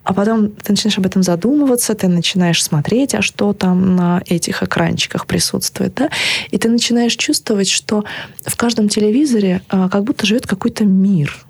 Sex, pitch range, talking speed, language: female, 180-220 Hz, 165 wpm, Russian